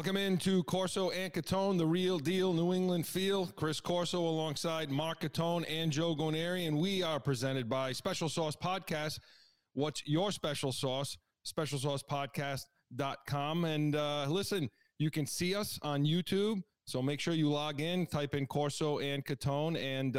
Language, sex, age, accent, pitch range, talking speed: English, male, 30-49, American, 135-170 Hz, 160 wpm